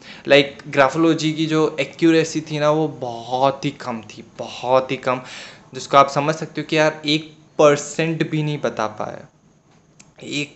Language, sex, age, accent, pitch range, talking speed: Hindi, male, 20-39, native, 135-155 Hz, 170 wpm